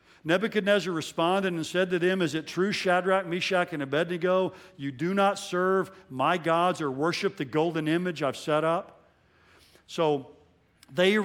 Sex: male